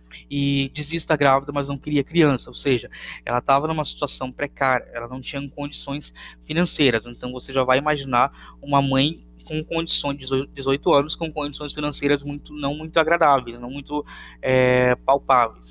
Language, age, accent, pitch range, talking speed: Portuguese, 10-29, Brazilian, 125-155 Hz, 155 wpm